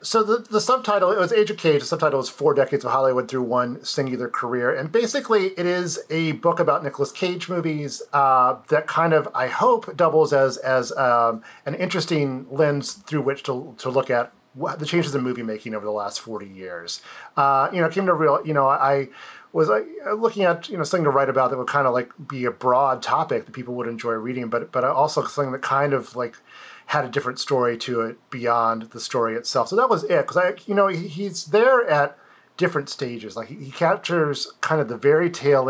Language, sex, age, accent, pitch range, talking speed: English, male, 40-59, American, 125-160 Hz, 220 wpm